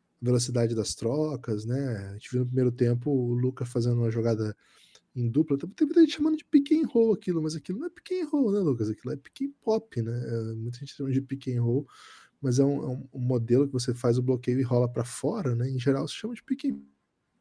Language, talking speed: Portuguese, 240 wpm